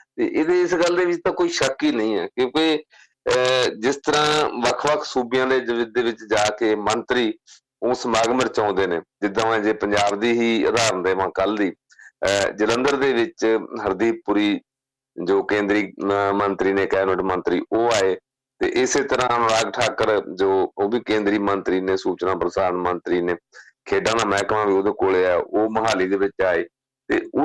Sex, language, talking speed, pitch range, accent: male, English, 100 wpm, 105-150 Hz, Indian